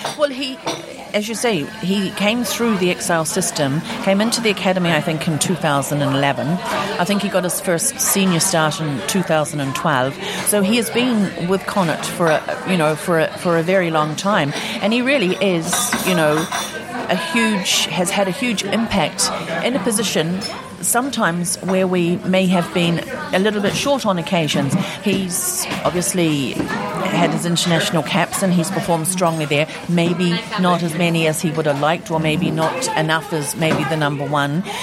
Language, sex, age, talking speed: English, female, 40-59, 190 wpm